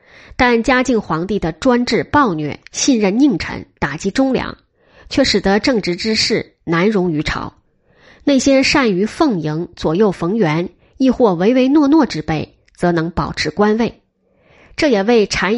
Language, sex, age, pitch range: Chinese, female, 20-39, 170-245 Hz